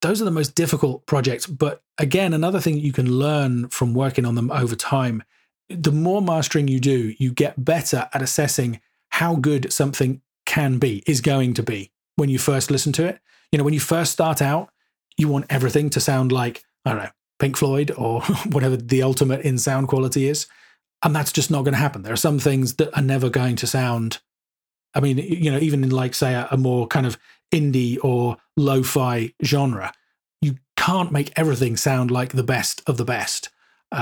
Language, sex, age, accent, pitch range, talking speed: English, male, 40-59, British, 125-150 Hz, 205 wpm